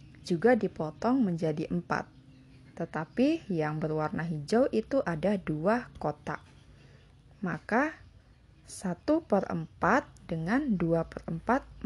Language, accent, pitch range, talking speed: Indonesian, native, 160-245 Hz, 80 wpm